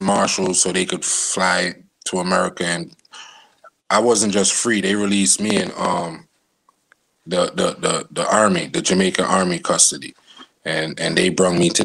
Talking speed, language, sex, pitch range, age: 160 wpm, English, male, 90-105 Hz, 20-39